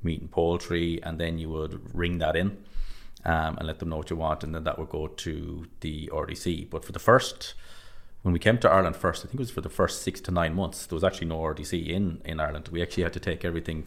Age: 30-49